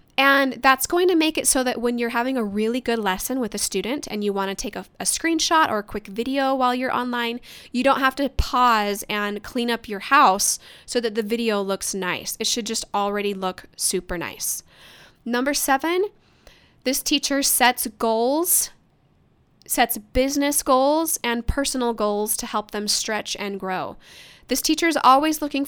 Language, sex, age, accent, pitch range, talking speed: English, female, 10-29, American, 205-265 Hz, 185 wpm